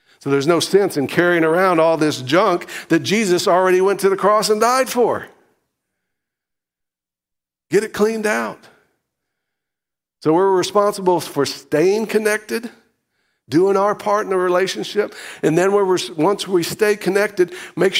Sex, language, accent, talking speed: male, English, American, 145 wpm